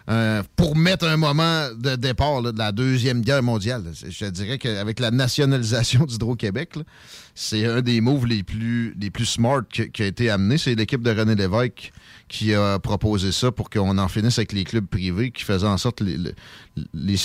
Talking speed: 210 wpm